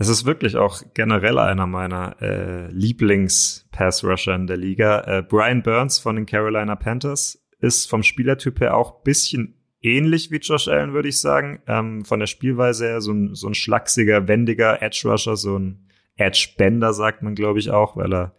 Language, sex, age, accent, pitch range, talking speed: German, male, 30-49, German, 105-120 Hz, 175 wpm